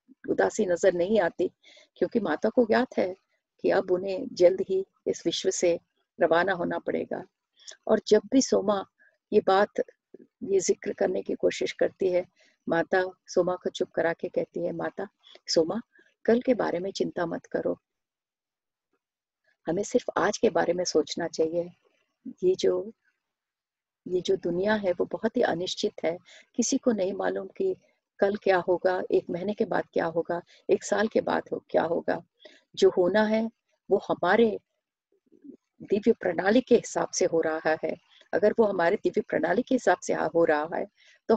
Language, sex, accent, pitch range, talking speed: Hindi, female, native, 180-240 Hz, 165 wpm